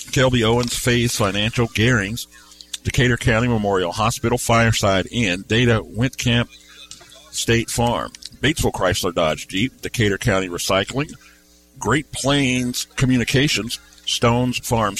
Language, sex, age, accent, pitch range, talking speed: English, male, 50-69, American, 100-130 Hz, 110 wpm